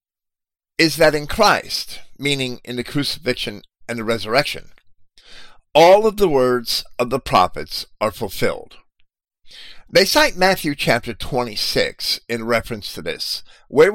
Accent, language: American, English